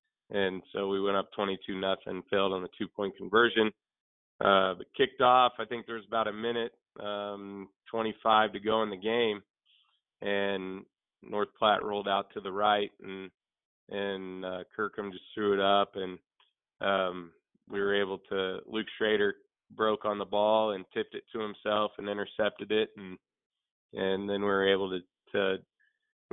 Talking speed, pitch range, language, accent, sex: 175 wpm, 100-110 Hz, English, American, male